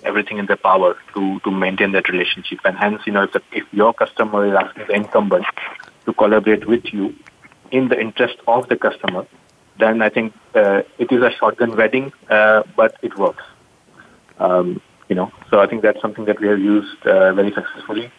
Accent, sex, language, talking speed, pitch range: Indian, male, English, 195 wpm, 100-115 Hz